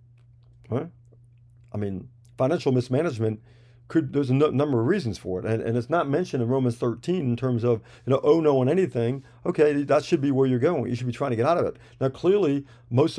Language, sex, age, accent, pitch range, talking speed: English, male, 50-69, American, 120-140 Hz, 225 wpm